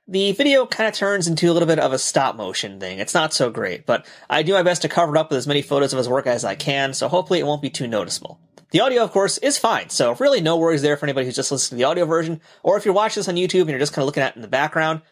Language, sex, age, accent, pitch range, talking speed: English, male, 30-49, American, 145-190 Hz, 325 wpm